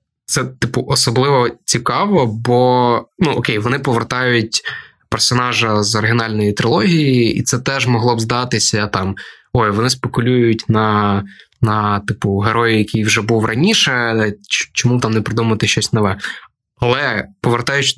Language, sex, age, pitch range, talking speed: Ukrainian, male, 20-39, 110-130 Hz, 130 wpm